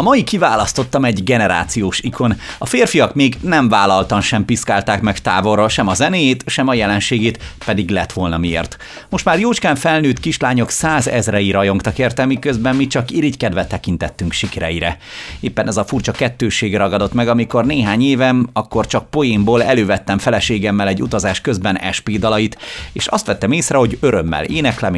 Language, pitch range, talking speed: Hungarian, 95-130 Hz, 160 wpm